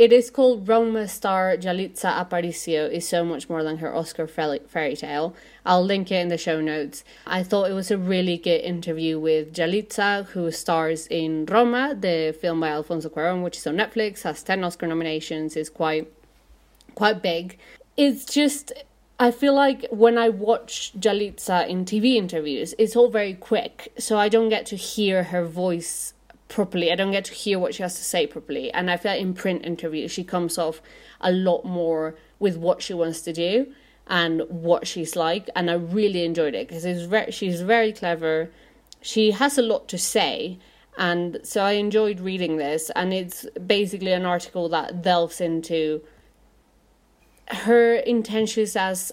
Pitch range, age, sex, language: 165-215 Hz, 30-49, female, English